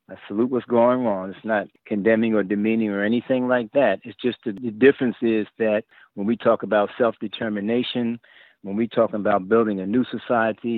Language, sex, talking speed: English, male, 180 wpm